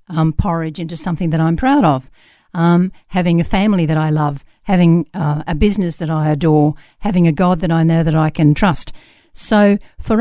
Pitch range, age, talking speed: 160-210 Hz, 50-69, 200 wpm